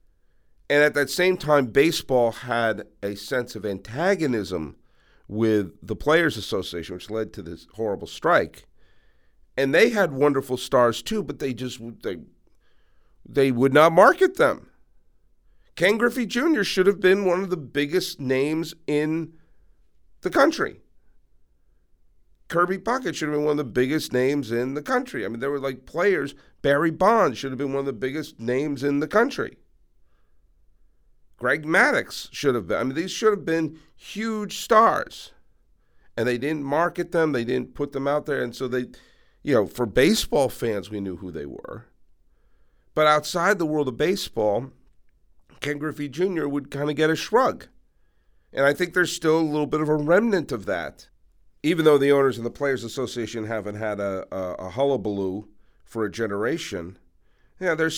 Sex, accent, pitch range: male, American, 105-155 Hz